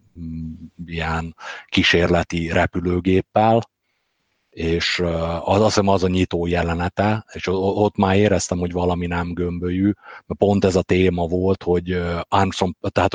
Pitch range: 90-100 Hz